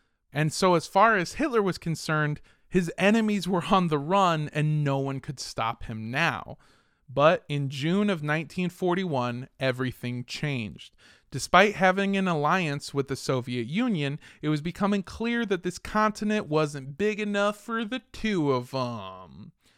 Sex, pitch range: male, 135-195 Hz